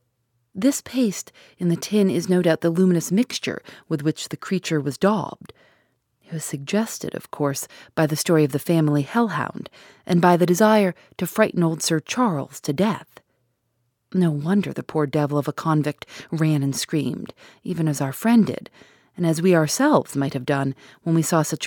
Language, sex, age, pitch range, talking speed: English, female, 40-59, 145-190 Hz, 185 wpm